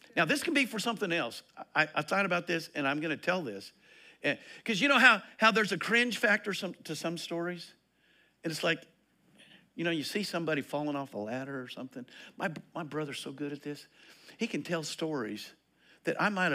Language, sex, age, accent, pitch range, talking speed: English, male, 50-69, American, 150-210 Hz, 220 wpm